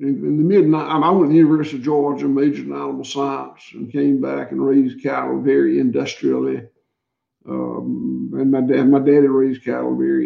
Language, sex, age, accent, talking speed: English, male, 60-79, American, 180 wpm